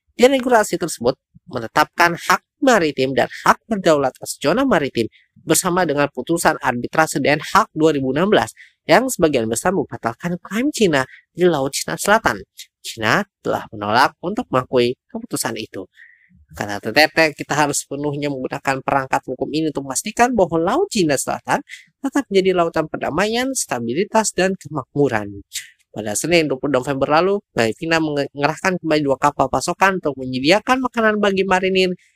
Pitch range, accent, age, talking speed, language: 130-185 Hz, native, 20-39, 135 wpm, Indonesian